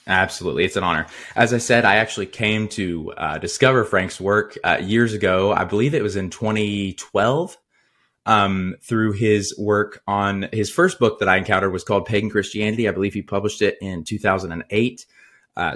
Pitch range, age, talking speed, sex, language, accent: 100-115 Hz, 20-39, 175 wpm, male, English, American